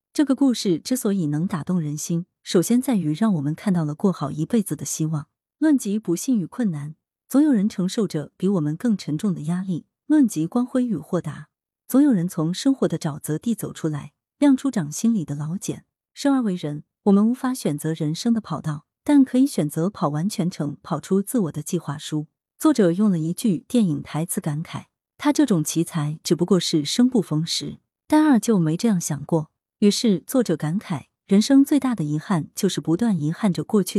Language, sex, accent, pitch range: Chinese, female, native, 155-225 Hz